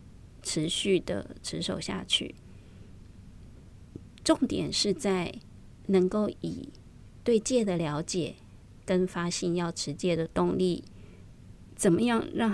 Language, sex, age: Chinese, female, 20-39